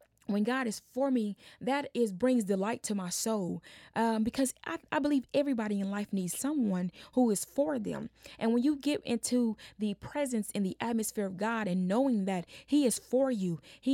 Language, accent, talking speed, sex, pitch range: English, American, 200 wpm, female, 190-255 Hz